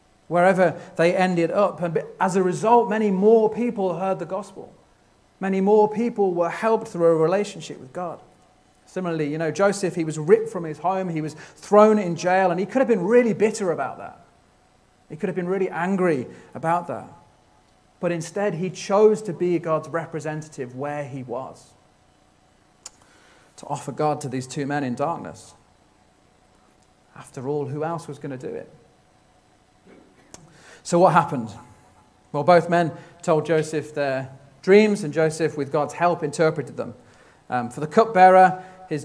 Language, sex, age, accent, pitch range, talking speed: English, male, 40-59, British, 145-185 Hz, 165 wpm